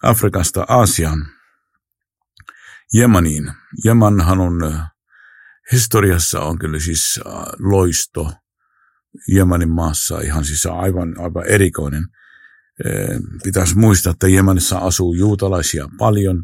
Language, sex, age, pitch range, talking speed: Finnish, male, 50-69, 85-105 Hz, 90 wpm